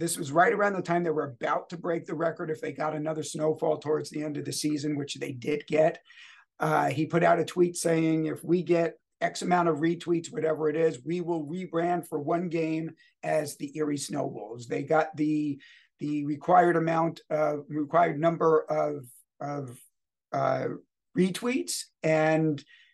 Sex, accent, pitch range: male, American, 155-175 Hz